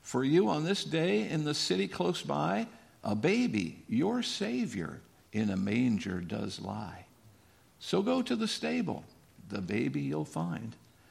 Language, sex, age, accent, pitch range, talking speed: English, male, 50-69, American, 95-150 Hz, 150 wpm